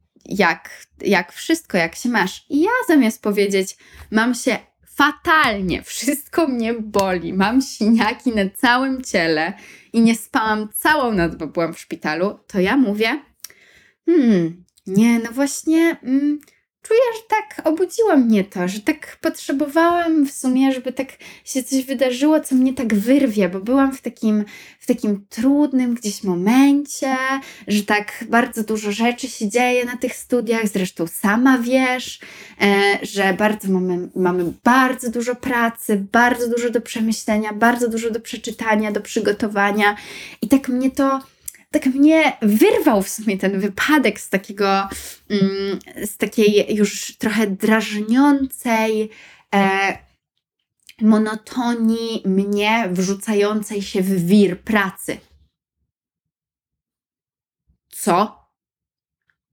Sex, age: female, 20-39